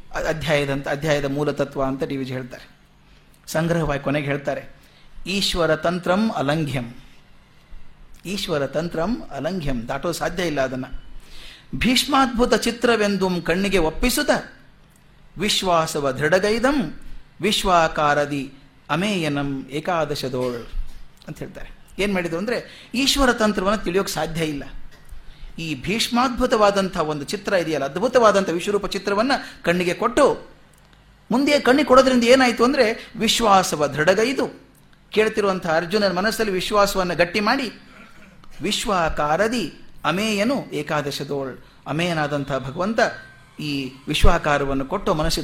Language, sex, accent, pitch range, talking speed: Kannada, male, native, 145-205 Hz, 95 wpm